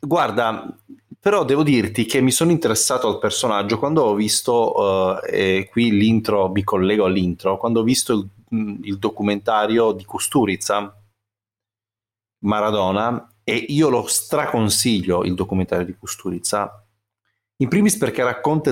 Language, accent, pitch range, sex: Italian, native, 105-130 Hz, male